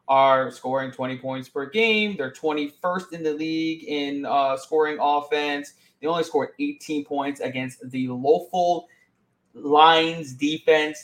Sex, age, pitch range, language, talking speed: male, 20-39, 130-155 Hz, English, 135 wpm